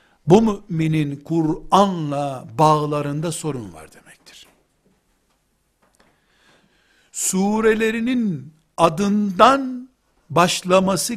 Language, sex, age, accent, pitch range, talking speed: Turkish, male, 60-79, native, 160-225 Hz, 55 wpm